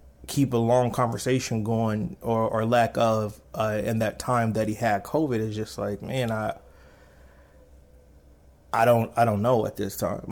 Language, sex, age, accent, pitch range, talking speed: English, male, 20-39, American, 100-115 Hz, 175 wpm